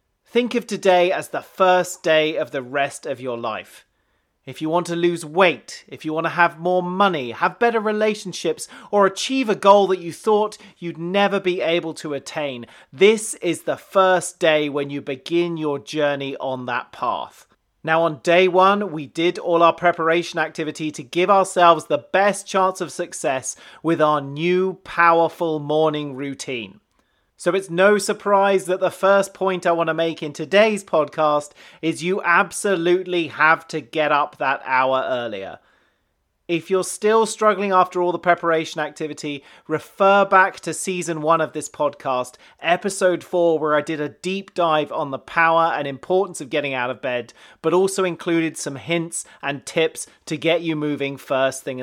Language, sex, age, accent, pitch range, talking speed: English, male, 30-49, British, 150-185 Hz, 175 wpm